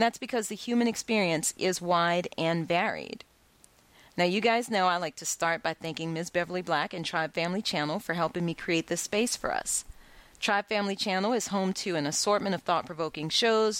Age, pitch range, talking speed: 30-49, 170-220 Hz, 195 wpm